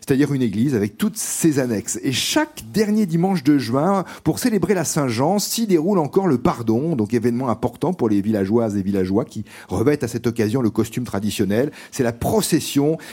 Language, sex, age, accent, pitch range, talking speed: French, male, 40-59, French, 125-185 Hz, 185 wpm